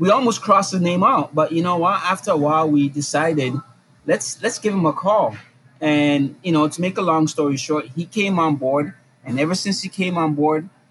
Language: English